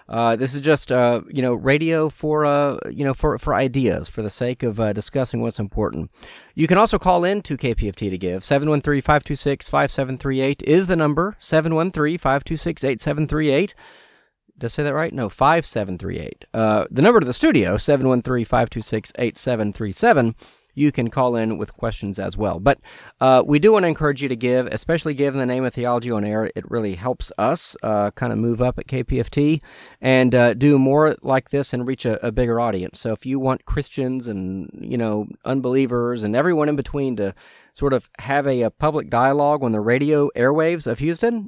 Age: 30-49